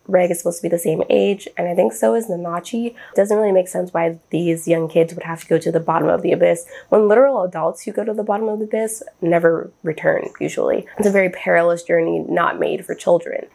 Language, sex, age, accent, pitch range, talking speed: English, female, 20-39, American, 170-225 Hz, 250 wpm